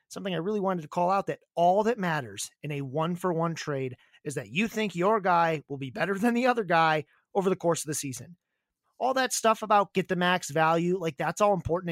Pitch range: 160-200 Hz